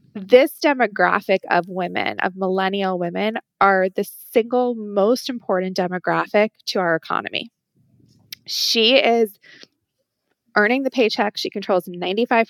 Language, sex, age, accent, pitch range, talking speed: English, female, 20-39, American, 185-235 Hz, 115 wpm